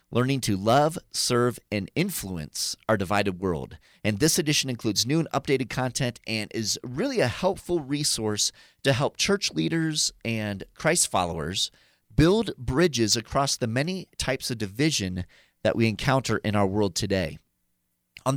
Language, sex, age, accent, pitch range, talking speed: English, male, 30-49, American, 105-150 Hz, 150 wpm